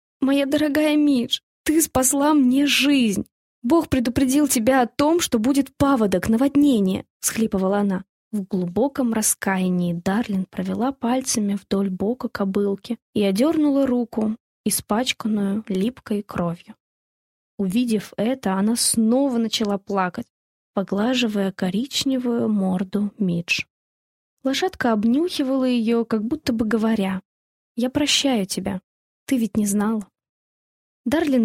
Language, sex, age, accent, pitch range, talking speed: Russian, female, 20-39, native, 200-270 Hz, 110 wpm